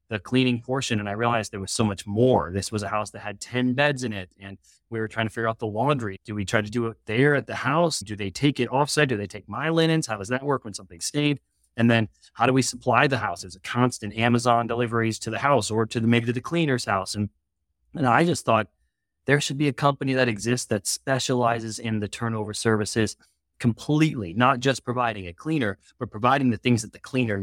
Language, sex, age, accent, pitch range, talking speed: English, male, 30-49, American, 100-125 Hz, 245 wpm